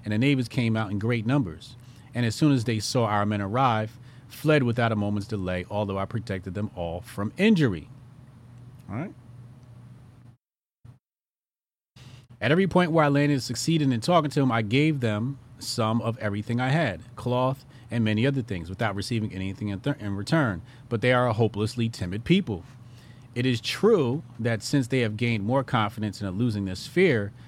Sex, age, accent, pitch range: male, 30-49, American, 115-145 Hz